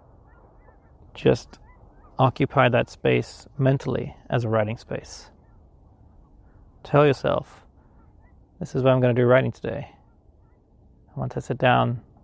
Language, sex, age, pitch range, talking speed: English, male, 30-49, 85-125 Hz, 125 wpm